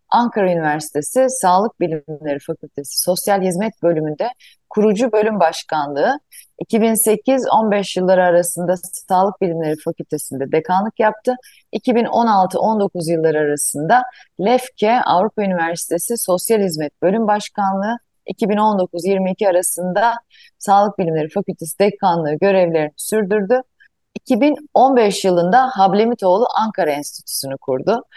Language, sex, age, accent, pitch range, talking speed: Turkish, female, 30-49, native, 165-215 Hz, 90 wpm